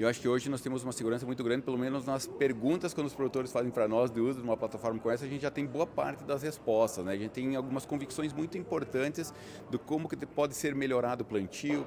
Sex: male